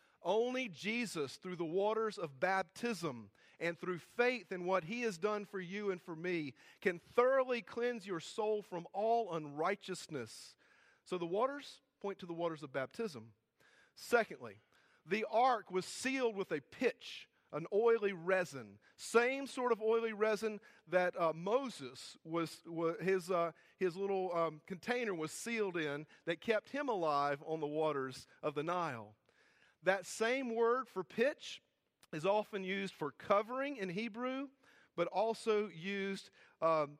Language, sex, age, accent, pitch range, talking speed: English, male, 40-59, American, 155-215 Hz, 150 wpm